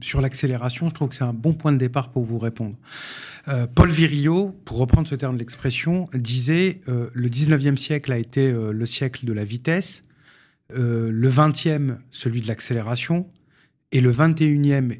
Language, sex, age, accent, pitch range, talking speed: French, male, 40-59, French, 125-160 Hz, 180 wpm